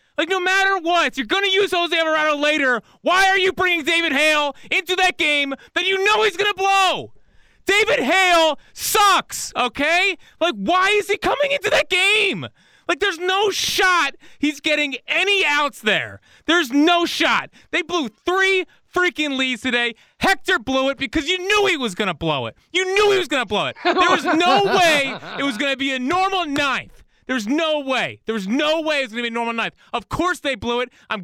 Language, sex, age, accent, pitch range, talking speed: English, male, 30-49, American, 240-355 Hz, 205 wpm